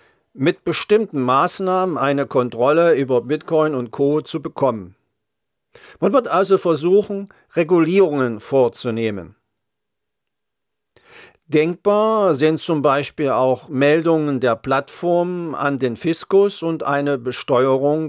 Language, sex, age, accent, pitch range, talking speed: German, male, 50-69, German, 130-180 Hz, 105 wpm